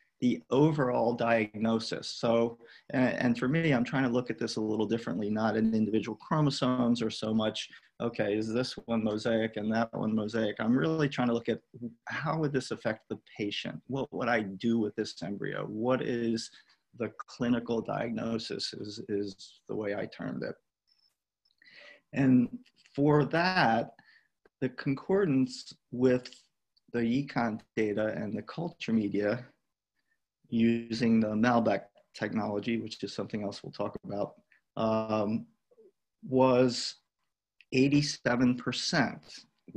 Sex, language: male, English